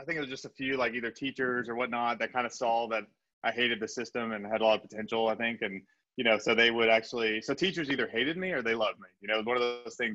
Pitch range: 100-120 Hz